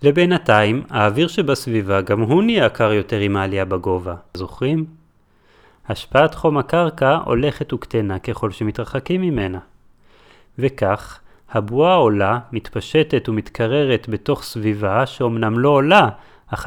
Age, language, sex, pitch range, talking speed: 30-49, Hebrew, male, 105-150 Hz, 110 wpm